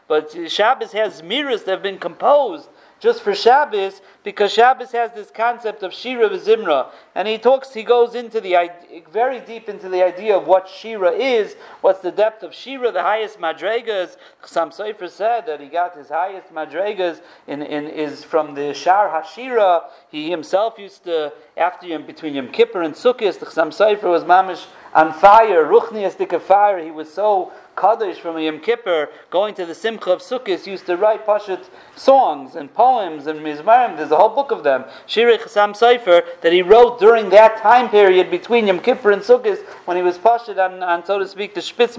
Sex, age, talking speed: male, 40-59, 190 wpm